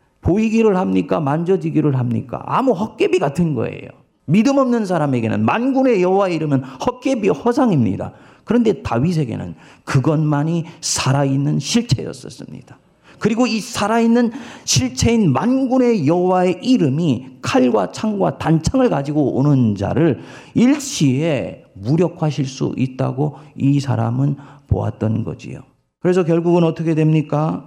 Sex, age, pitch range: male, 40-59, 130-165 Hz